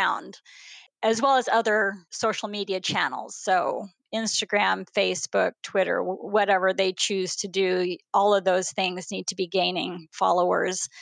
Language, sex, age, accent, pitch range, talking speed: English, female, 30-49, American, 195-230 Hz, 135 wpm